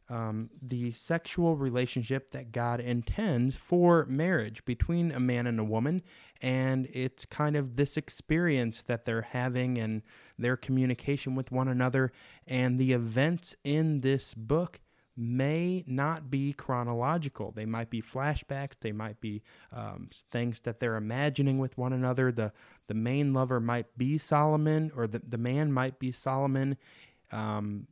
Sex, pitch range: male, 115-140 Hz